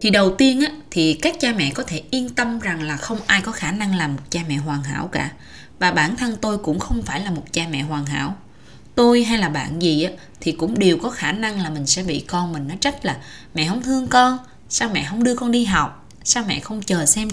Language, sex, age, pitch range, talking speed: Vietnamese, female, 20-39, 155-235 Hz, 265 wpm